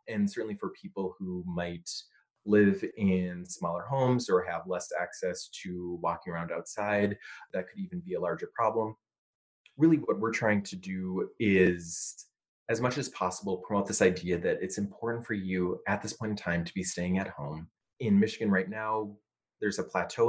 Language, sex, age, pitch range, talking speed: English, male, 20-39, 90-115 Hz, 180 wpm